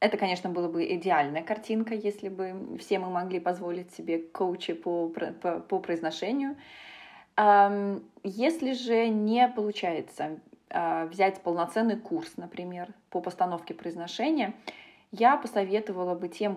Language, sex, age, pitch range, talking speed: Russian, female, 20-39, 180-230 Hz, 120 wpm